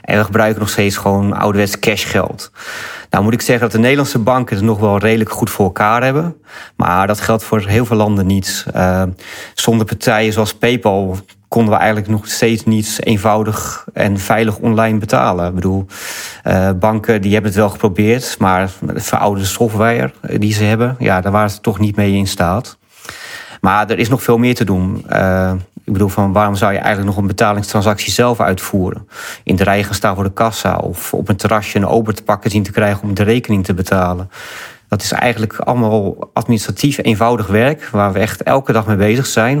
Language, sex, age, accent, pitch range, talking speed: English, male, 30-49, Dutch, 100-115 Hz, 200 wpm